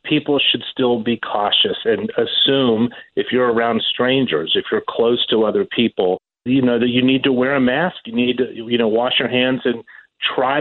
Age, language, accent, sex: 40-59, English, American, male